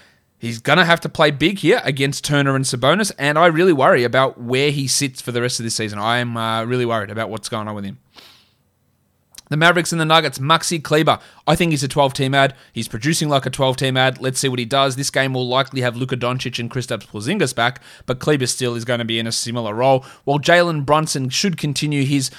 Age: 20-39